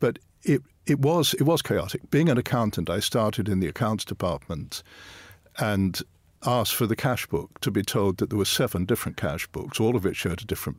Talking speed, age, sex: 210 wpm, 50-69, male